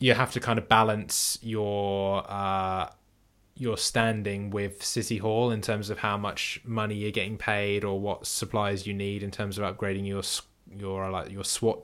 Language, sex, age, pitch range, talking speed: English, male, 20-39, 100-110 Hz, 180 wpm